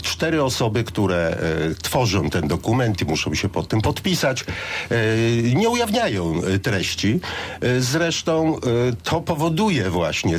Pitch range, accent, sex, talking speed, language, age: 90-135 Hz, native, male, 110 wpm, Polish, 50-69